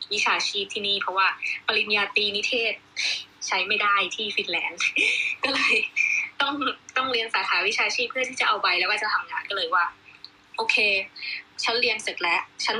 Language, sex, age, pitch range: Thai, female, 20-39, 200-285 Hz